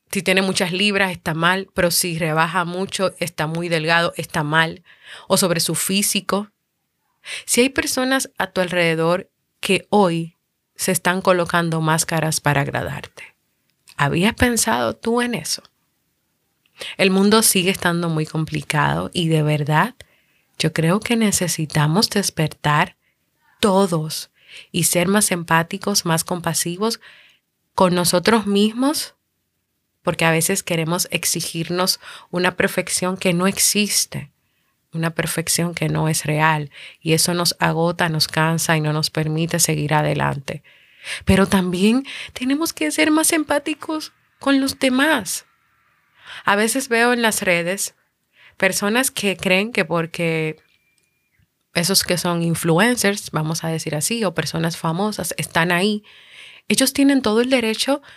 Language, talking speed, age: Spanish, 135 wpm, 30-49